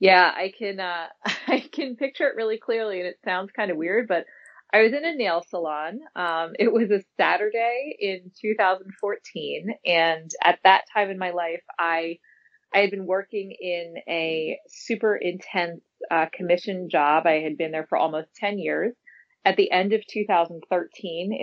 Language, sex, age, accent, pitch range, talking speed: English, female, 30-49, American, 165-205 Hz, 175 wpm